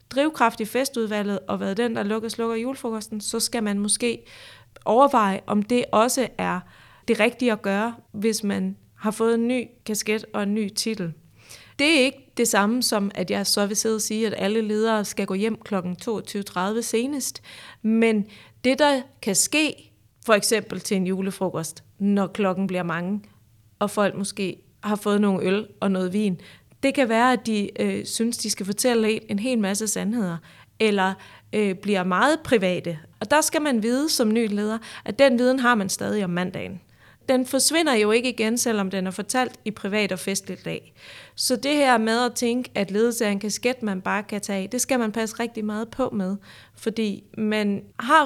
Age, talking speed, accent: 30-49, 195 wpm, native